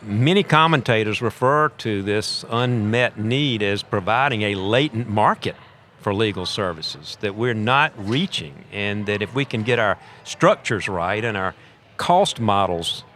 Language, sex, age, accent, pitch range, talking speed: English, male, 50-69, American, 100-125 Hz, 145 wpm